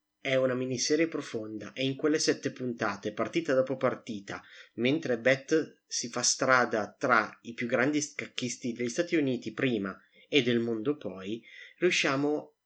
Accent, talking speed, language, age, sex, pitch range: native, 145 wpm, Italian, 30-49, male, 115-145 Hz